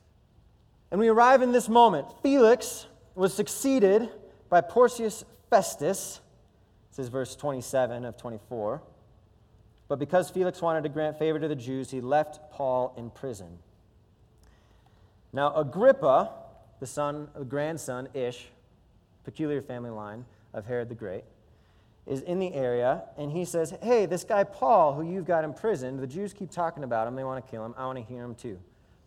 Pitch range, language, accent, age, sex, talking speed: 110-160 Hz, English, American, 30-49, male, 160 wpm